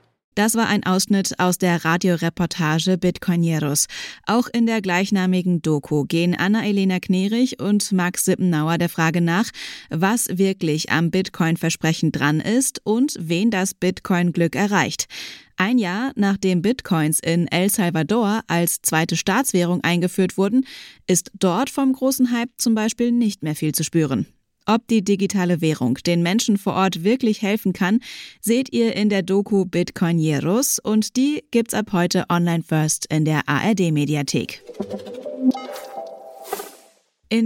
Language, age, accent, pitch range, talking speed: German, 20-39, German, 175-225 Hz, 135 wpm